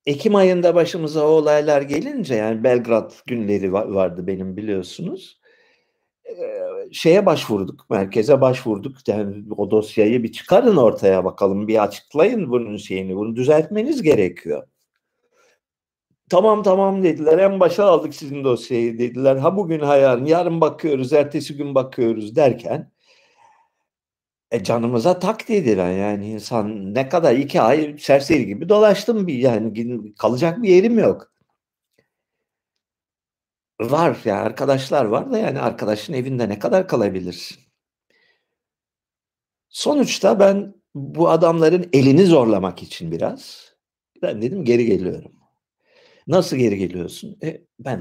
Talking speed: 125 wpm